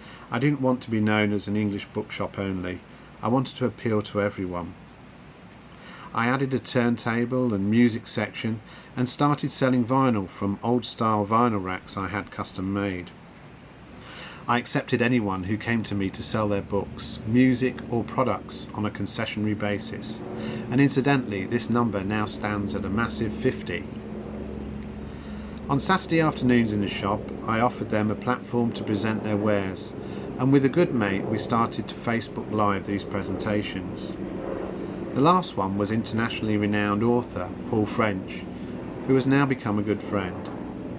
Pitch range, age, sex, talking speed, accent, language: 100-125 Hz, 40-59, male, 160 wpm, British, English